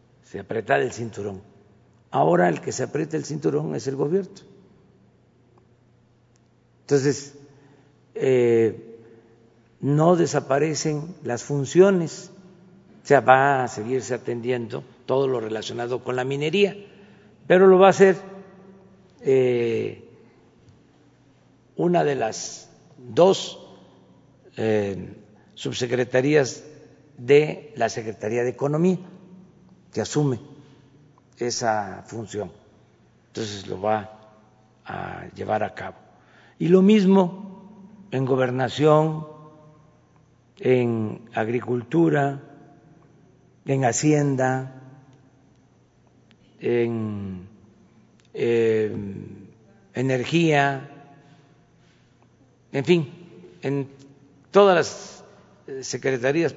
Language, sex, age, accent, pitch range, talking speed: Spanish, male, 50-69, Mexican, 120-150 Hz, 85 wpm